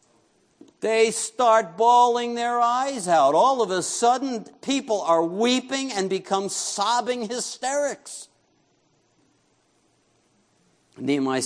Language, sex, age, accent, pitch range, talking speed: English, male, 60-79, American, 150-225 Hz, 95 wpm